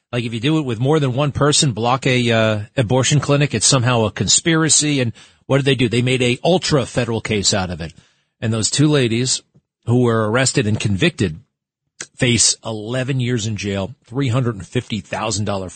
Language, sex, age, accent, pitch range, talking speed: English, male, 40-59, American, 105-145 Hz, 180 wpm